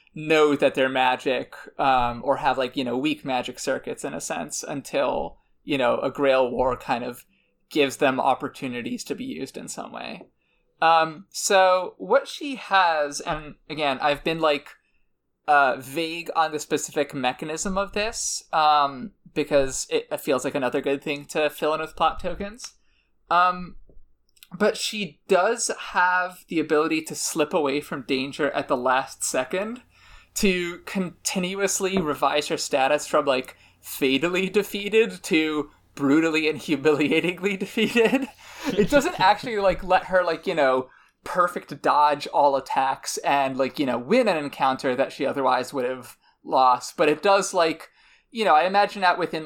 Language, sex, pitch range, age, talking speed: English, male, 140-190 Hz, 20-39, 160 wpm